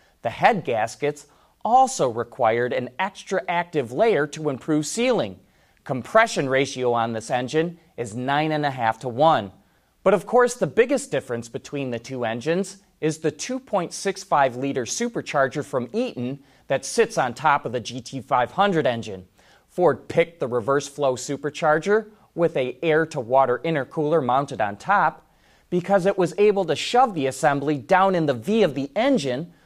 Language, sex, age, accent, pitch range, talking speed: English, male, 30-49, American, 130-195 Hz, 155 wpm